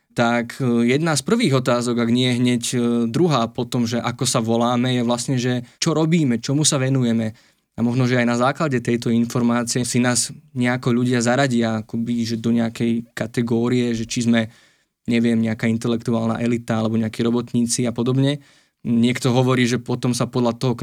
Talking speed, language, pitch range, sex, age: 175 wpm, Slovak, 115-130 Hz, male, 20-39